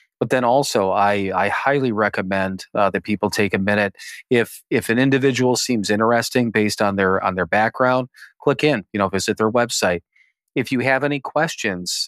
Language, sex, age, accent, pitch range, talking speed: English, male, 30-49, American, 100-120 Hz, 185 wpm